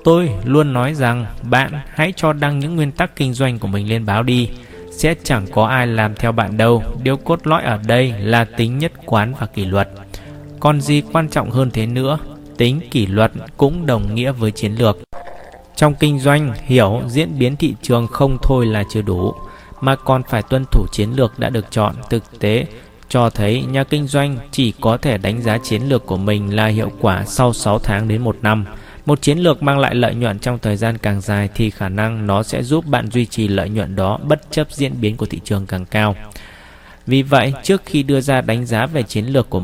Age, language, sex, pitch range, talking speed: 20-39, Vietnamese, male, 105-140 Hz, 225 wpm